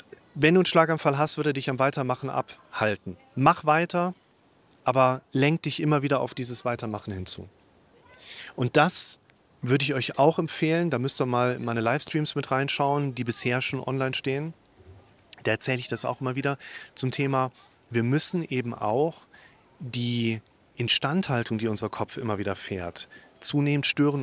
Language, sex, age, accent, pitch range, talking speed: German, male, 40-59, German, 120-150 Hz, 160 wpm